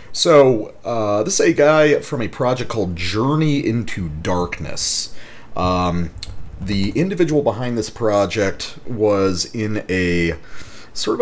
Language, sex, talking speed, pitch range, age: English, male, 125 wpm, 85-115 Hz, 30-49